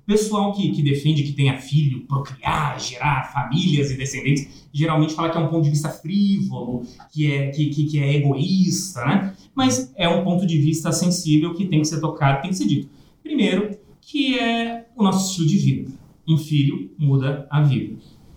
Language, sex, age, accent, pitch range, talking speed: Portuguese, male, 30-49, Brazilian, 140-165 Hz, 195 wpm